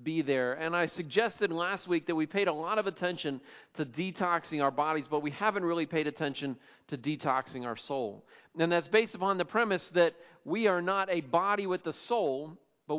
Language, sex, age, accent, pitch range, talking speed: English, male, 40-59, American, 150-190 Hz, 205 wpm